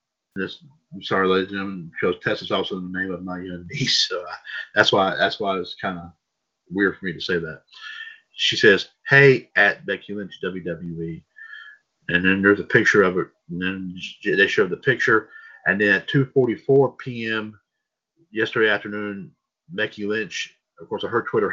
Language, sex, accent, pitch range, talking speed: English, male, American, 110-160 Hz, 190 wpm